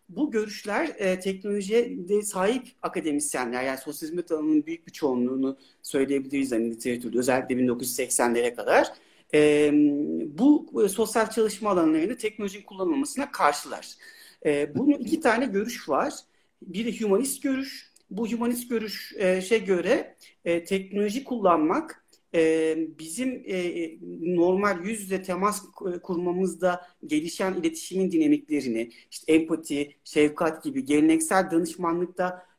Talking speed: 100 wpm